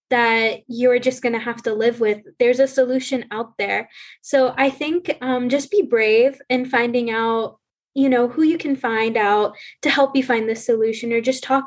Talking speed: 205 wpm